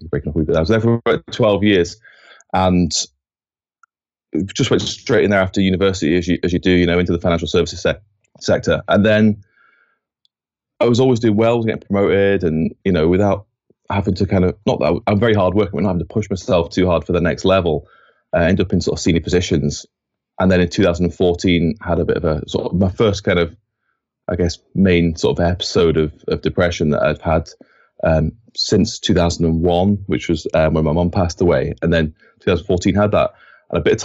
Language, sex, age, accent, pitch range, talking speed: English, male, 20-39, British, 85-100 Hz, 215 wpm